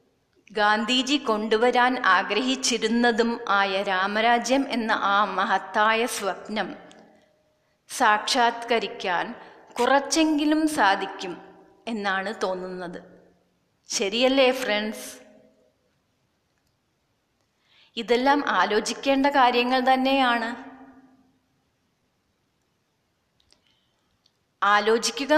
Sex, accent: female, native